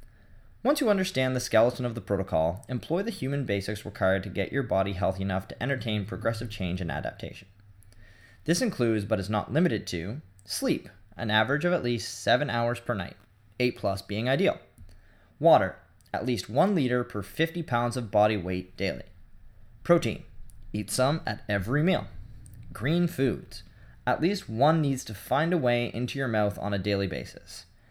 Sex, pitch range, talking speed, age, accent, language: male, 100-130 Hz, 175 wpm, 20-39, American, English